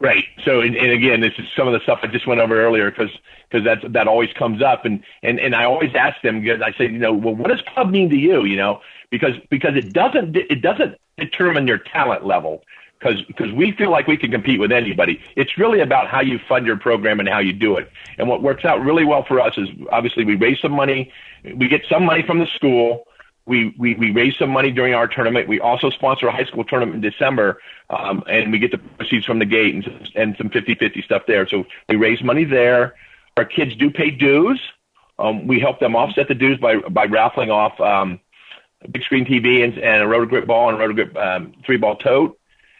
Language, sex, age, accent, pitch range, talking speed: English, male, 50-69, American, 115-145 Hz, 240 wpm